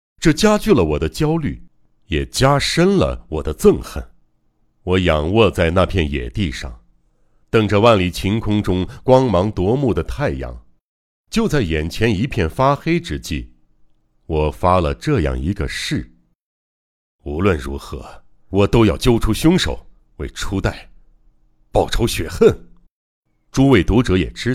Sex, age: male, 60-79